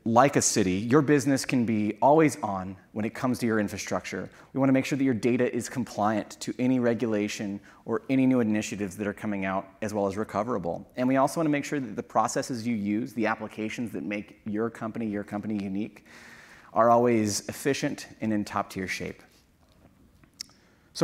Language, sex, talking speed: English, male, 195 wpm